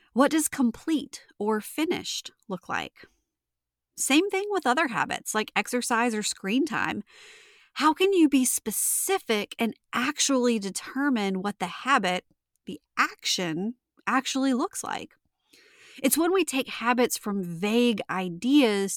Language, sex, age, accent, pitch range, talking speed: English, female, 30-49, American, 195-280 Hz, 130 wpm